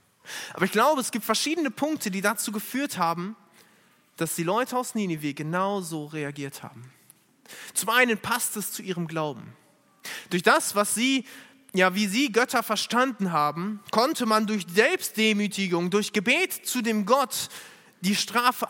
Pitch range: 170-235 Hz